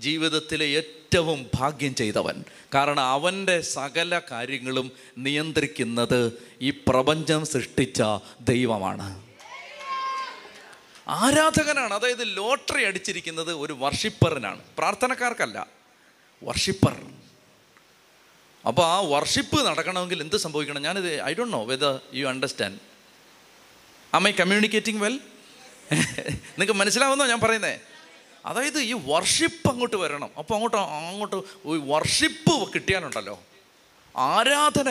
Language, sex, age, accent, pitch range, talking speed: Malayalam, male, 30-49, native, 145-215 Hz, 95 wpm